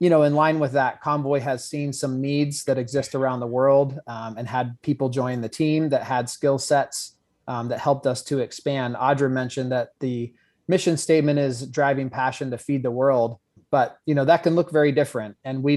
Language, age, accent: English, 30-49, American